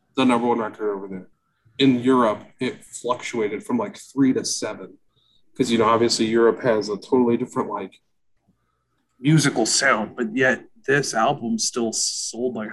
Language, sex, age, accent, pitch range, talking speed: English, male, 20-39, American, 105-130 Hz, 160 wpm